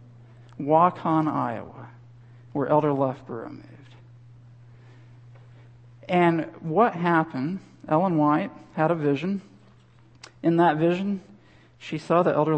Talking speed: 100 wpm